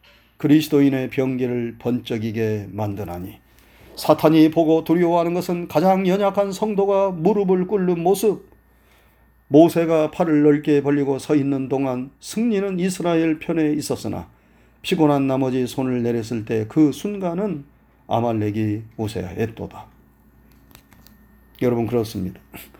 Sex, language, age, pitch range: male, Korean, 40-59, 125-175 Hz